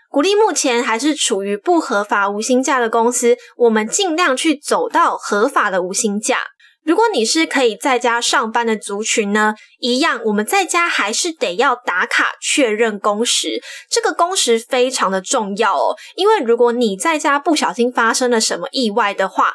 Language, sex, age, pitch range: Chinese, female, 10-29, 230-325 Hz